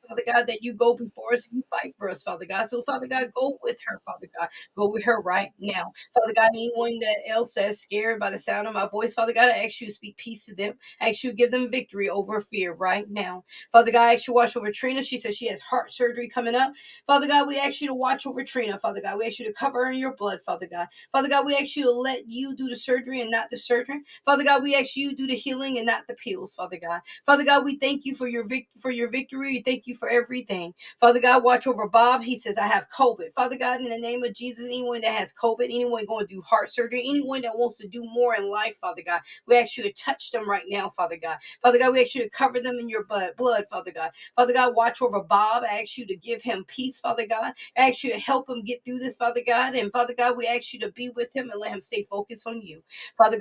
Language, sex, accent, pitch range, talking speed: English, female, American, 220-255 Hz, 280 wpm